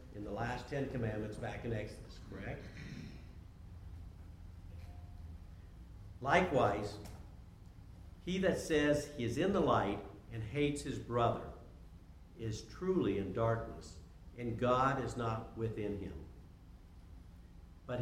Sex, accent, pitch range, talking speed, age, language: male, American, 85-125 Hz, 110 wpm, 60-79, French